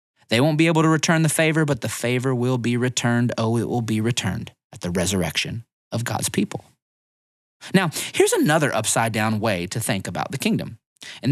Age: 30-49